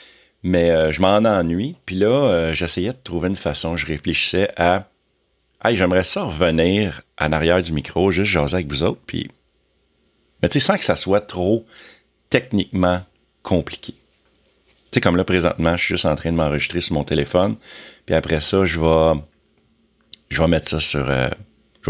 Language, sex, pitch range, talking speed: French, male, 80-95 Hz, 185 wpm